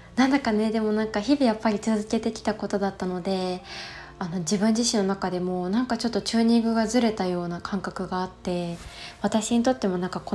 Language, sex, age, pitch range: Japanese, female, 20-39, 190-235 Hz